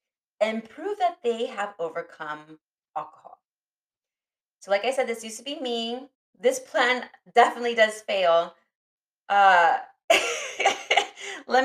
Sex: female